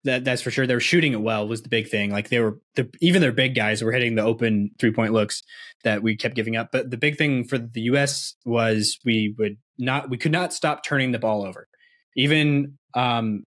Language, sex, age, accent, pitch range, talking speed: English, male, 20-39, American, 115-140 Hz, 240 wpm